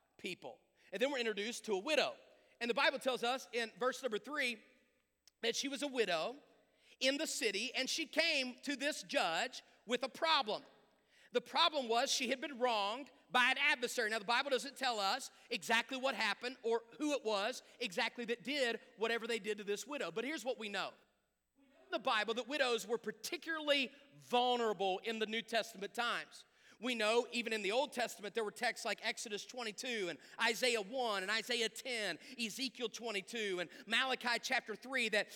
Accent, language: American, English